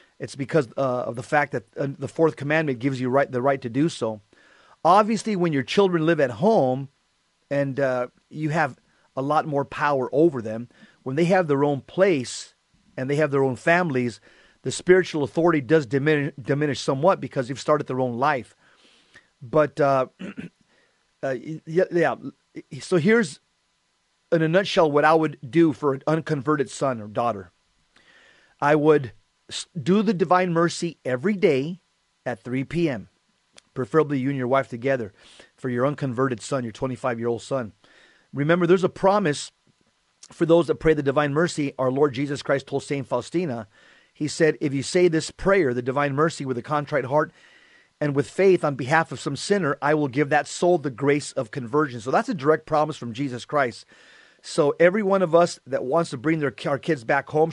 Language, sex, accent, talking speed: English, male, American, 185 wpm